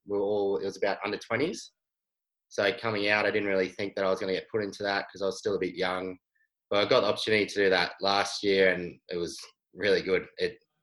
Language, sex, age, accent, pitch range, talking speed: English, male, 20-39, Australian, 95-110 Hz, 260 wpm